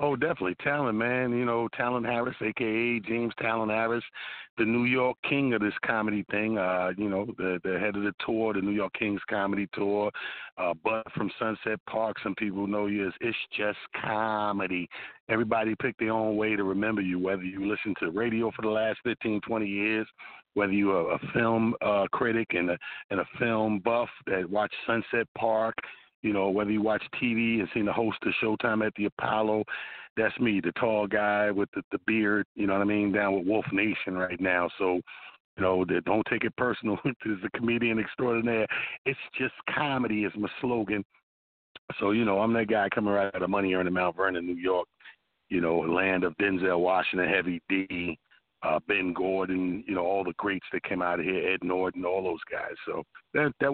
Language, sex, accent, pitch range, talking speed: English, male, American, 95-115 Hz, 205 wpm